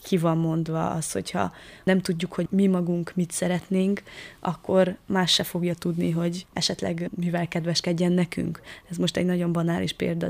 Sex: female